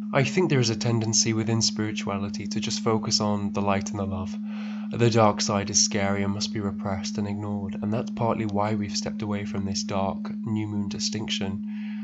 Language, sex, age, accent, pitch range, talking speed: English, male, 10-29, British, 105-120 Hz, 205 wpm